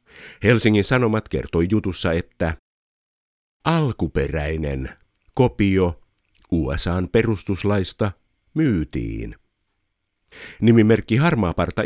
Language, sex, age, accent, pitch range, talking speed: Finnish, male, 50-69, native, 80-110 Hz, 60 wpm